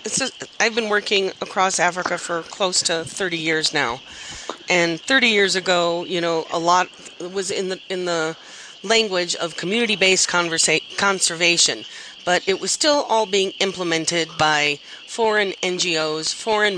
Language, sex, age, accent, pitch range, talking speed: English, female, 40-59, American, 175-220 Hz, 150 wpm